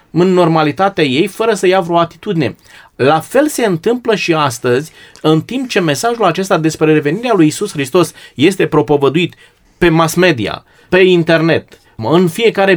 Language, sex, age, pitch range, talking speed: Romanian, male, 30-49, 150-205 Hz, 155 wpm